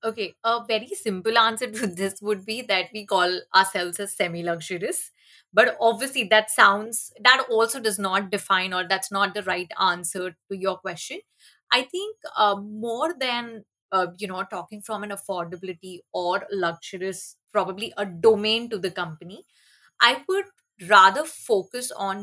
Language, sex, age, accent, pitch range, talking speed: Hindi, female, 30-49, native, 195-245 Hz, 160 wpm